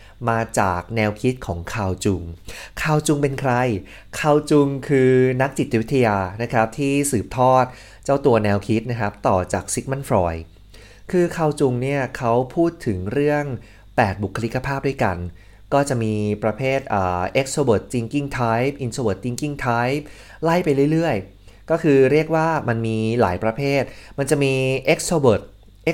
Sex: male